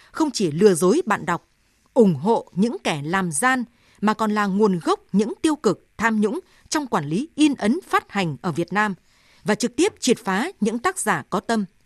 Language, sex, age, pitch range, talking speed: Vietnamese, female, 20-39, 185-265 Hz, 215 wpm